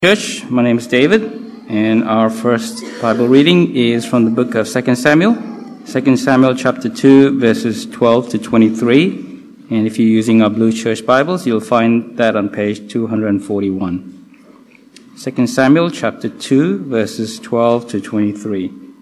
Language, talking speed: English, 140 wpm